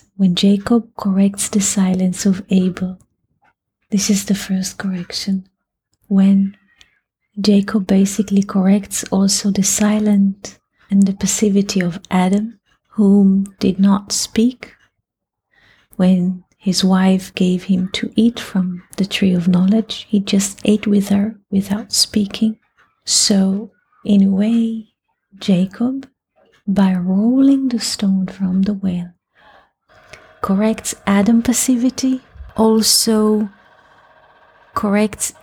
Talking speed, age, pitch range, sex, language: 110 wpm, 30-49, 190-220 Hz, female, English